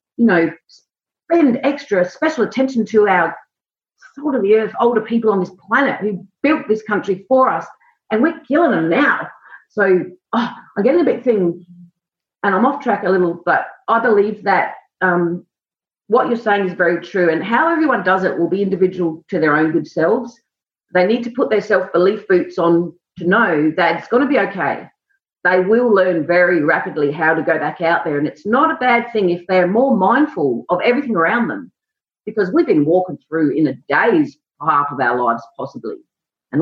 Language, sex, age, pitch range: English, female, 40-59, 175-250 Hz